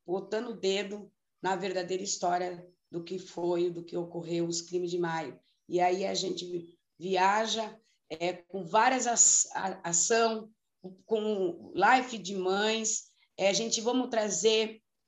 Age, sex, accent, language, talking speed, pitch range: 20-39, female, Brazilian, Portuguese, 135 wpm, 185-225 Hz